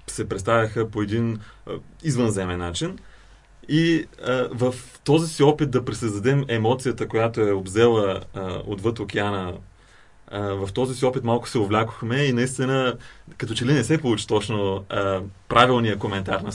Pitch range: 100-125 Hz